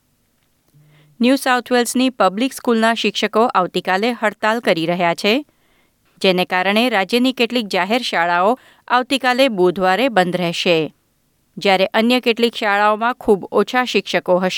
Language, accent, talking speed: Gujarati, native, 110 wpm